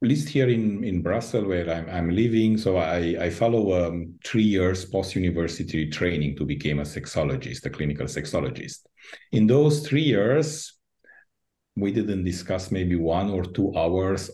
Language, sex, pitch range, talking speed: English, male, 90-120 Hz, 160 wpm